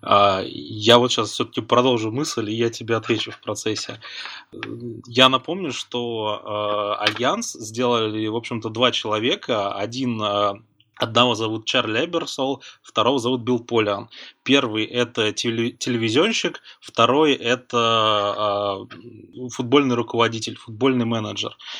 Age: 20-39